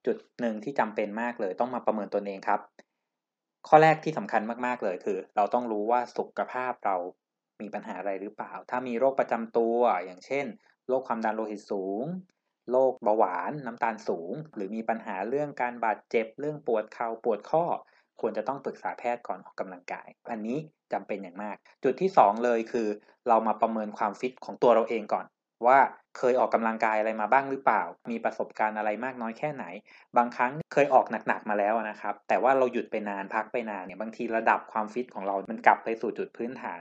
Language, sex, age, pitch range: Thai, male, 20-39, 110-130 Hz